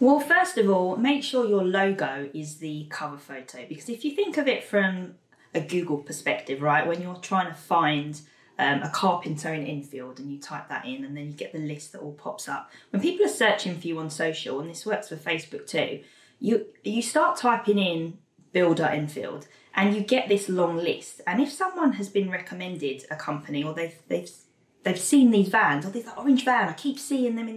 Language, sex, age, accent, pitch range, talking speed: English, female, 20-39, British, 155-225 Hz, 215 wpm